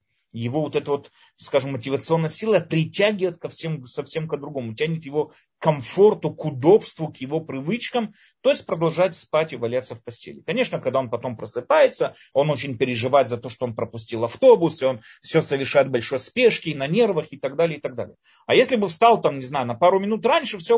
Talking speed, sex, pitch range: 200 wpm, male, 120-170 Hz